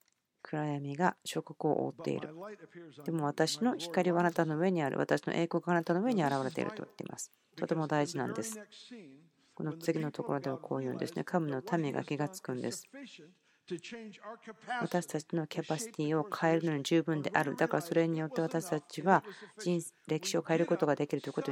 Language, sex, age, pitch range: Japanese, female, 40-59, 150-180 Hz